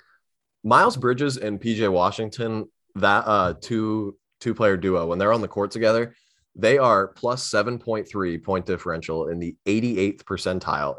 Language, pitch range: English, 85-110 Hz